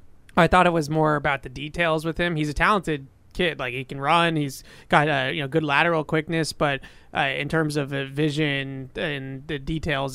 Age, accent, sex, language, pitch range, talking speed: 20-39, American, male, English, 140-170 Hz, 215 wpm